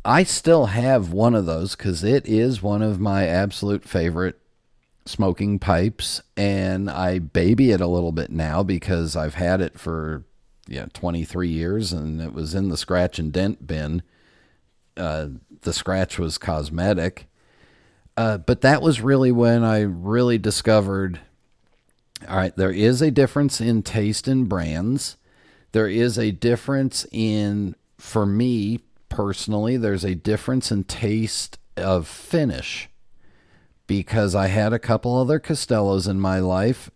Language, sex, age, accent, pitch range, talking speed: English, male, 50-69, American, 90-115 Hz, 145 wpm